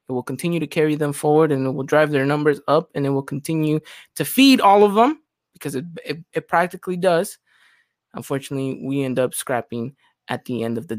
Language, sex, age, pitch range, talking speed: English, male, 20-39, 135-160 Hz, 215 wpm